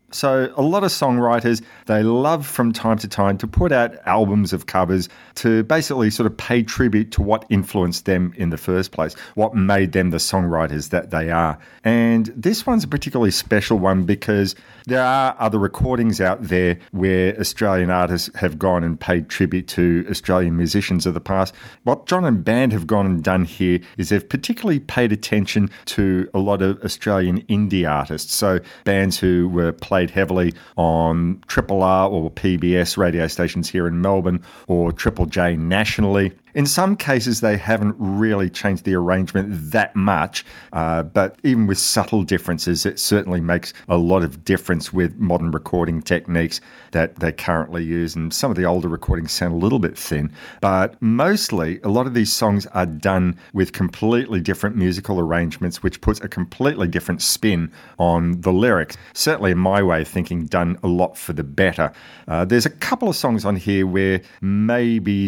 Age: 40-59